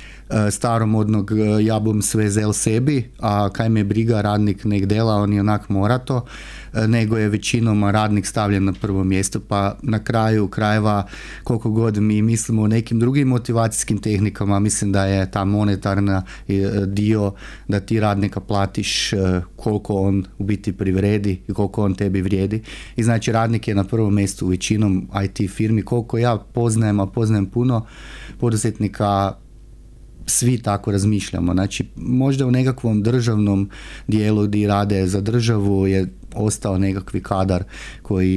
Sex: male